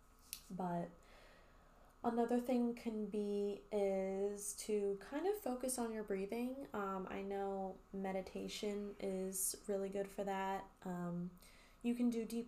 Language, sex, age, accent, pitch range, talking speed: English, female, 20-39, American, 195-240 Hz, 130 wpm